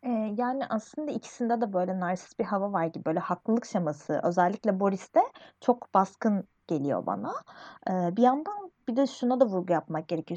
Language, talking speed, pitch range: Turkish, 160 wpm, 175-225 Hz